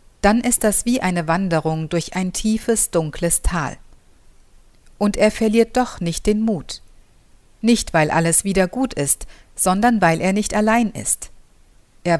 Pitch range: 170-220 Hz